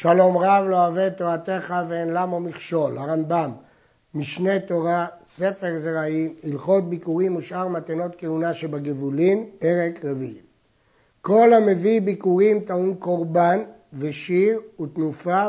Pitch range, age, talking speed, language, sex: 160-200 Hz, 60-79, 110 wpm, Hebrew, male